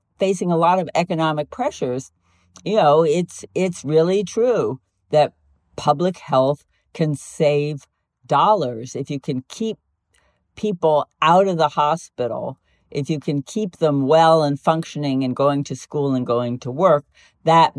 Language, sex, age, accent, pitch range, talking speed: English, female, 50-69, American, 130-165 Hz, 150 wpm